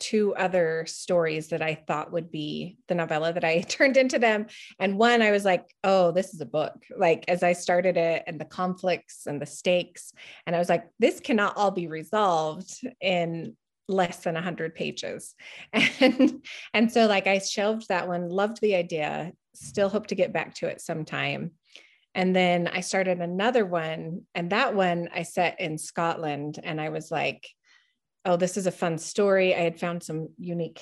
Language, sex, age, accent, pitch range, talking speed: English, female, 30-49, American, 165-210 Hz, 190 wpm